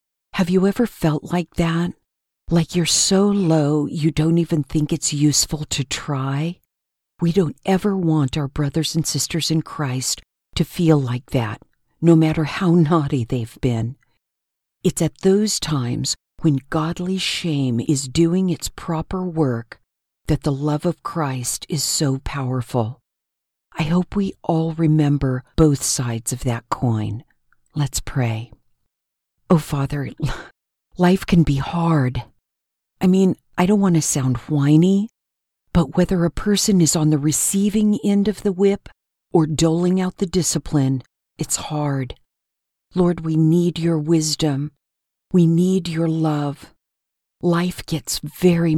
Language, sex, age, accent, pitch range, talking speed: English, female, 50-69, American, 140-170 Hz, 140 wpm